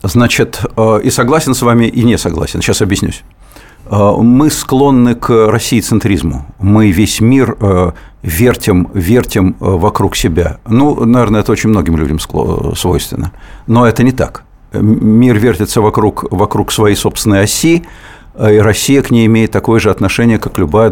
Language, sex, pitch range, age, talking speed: Russian, male, 100-120 Hz, 50-69, 140 wpm